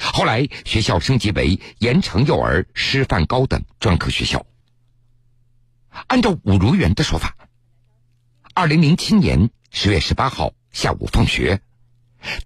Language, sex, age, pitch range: Chinese, male, 60-79, 100-120 Hz